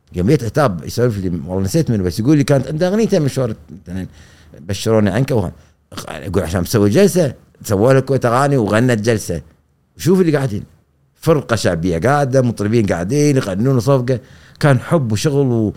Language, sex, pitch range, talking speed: Arabic, male, 95-135 Hz, 150 wpm